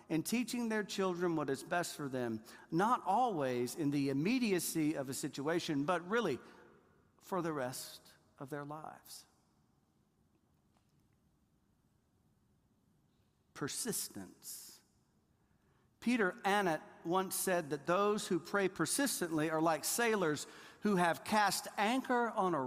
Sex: male